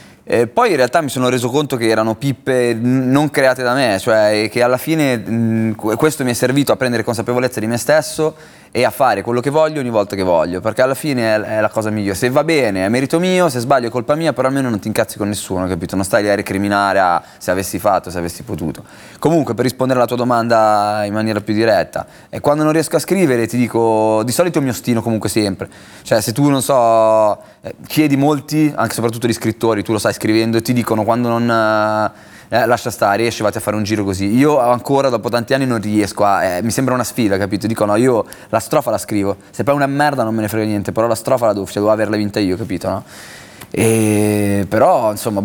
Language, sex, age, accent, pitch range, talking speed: Italian, male, 20-39, native, 105-130 Hz, 240 wpm